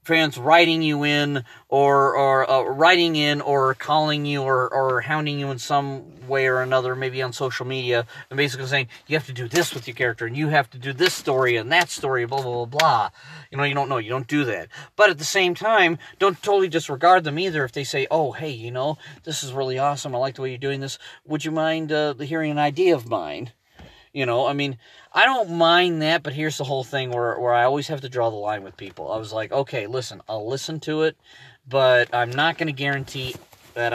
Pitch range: 120-155 Hz